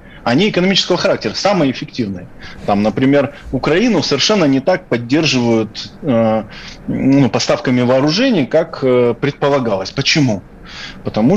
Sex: male